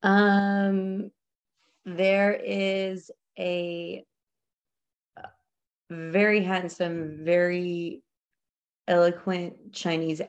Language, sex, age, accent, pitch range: English, female, 30-49, American, 155-195 Hz